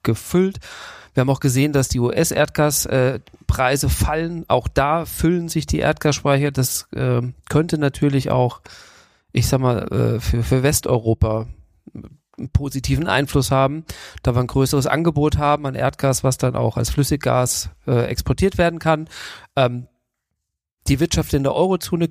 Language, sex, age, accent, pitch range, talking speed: German, male, 40-59, German, 115-145 Hz, 145 wpm